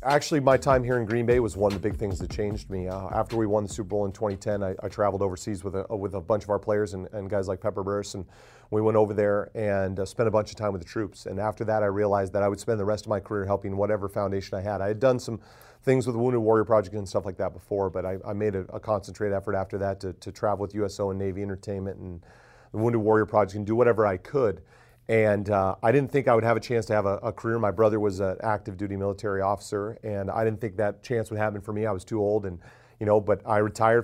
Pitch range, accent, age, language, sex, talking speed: 100-115 Hz, American, 40-59, English, male, 285 wpm